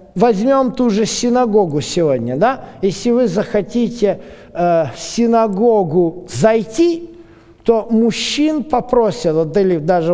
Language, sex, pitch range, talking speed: Russian, male, 175-230 Hz, 110 wpm